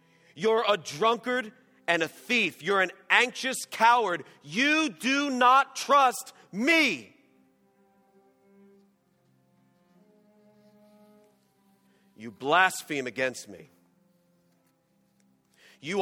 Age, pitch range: 40-59, 175-245 Hz